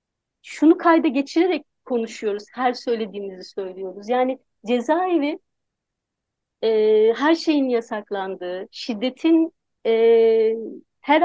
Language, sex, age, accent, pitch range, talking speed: Turkish, female, 40-59, native, 235-310 Hz, 85 wpm